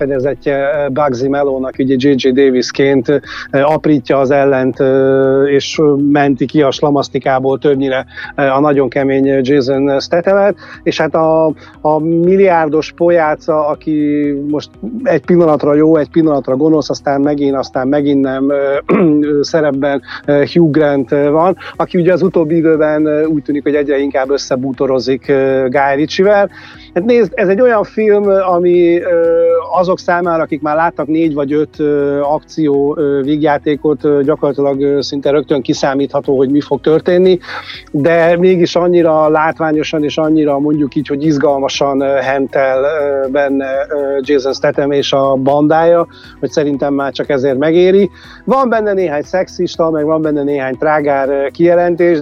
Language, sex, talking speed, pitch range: Hungarian, male, 130 wpm, 140-160 Hz